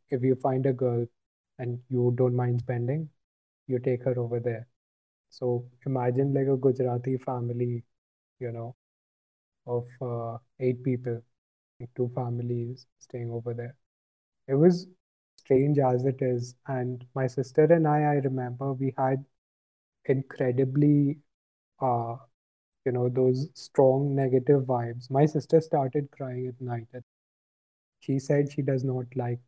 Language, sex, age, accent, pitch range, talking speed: Hindi, male, 20-39, native, 120-140 Hz, 140 wpm